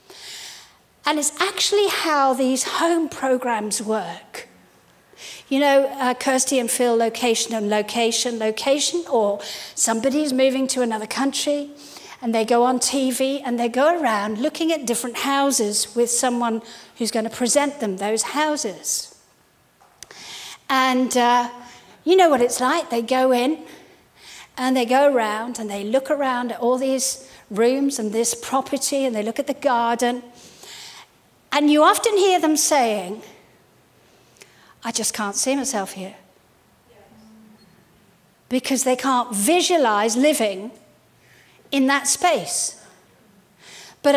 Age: 50-69